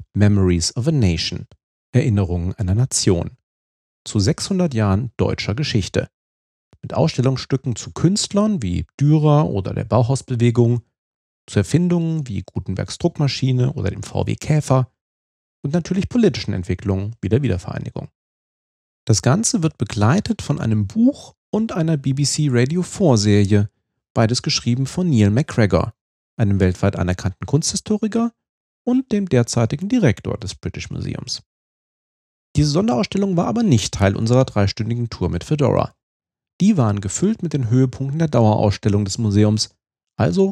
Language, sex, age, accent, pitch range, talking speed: German, male, 40-59, German, 100-150 Hz, 130 wpm